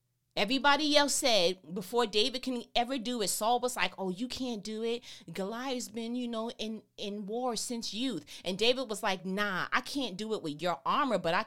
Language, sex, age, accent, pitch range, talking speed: English, female, 30-49, American, 195-290 Hz, 210 wpm